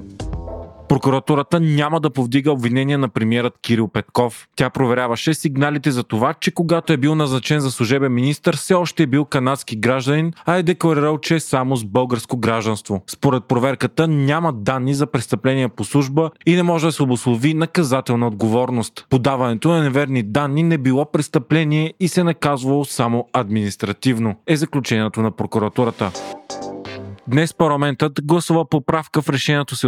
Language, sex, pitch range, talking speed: Bulgarian, male, 125-155 Hz, 155 wpm